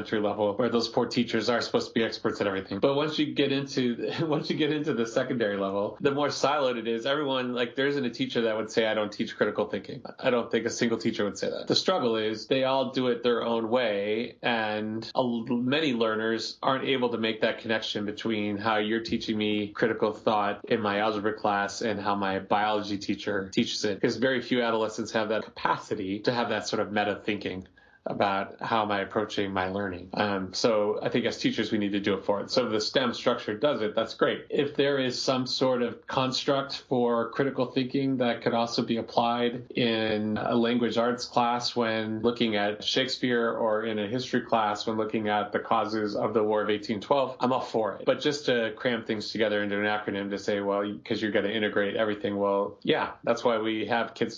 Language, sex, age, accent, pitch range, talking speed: English, male, 30-49, American, 105-120 Hz, 215 wpm